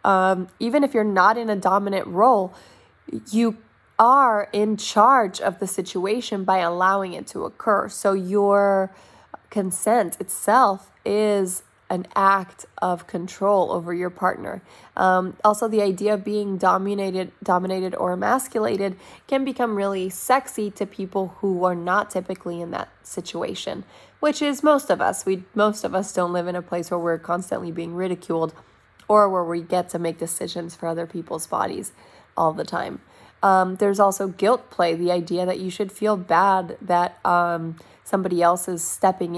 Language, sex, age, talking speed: English, female, 20-39, 165 wpm